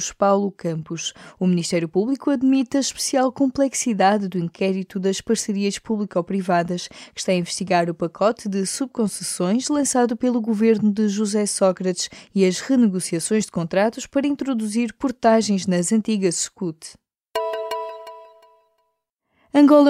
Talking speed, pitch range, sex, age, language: 120 wpm, 180-235 Hz, female, 20-39, Portuguese